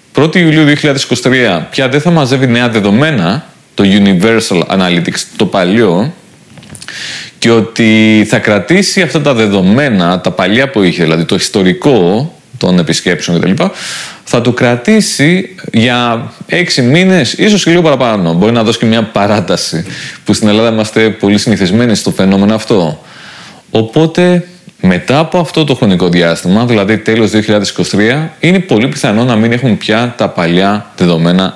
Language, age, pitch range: Greek, 30-49, 100-140 Hz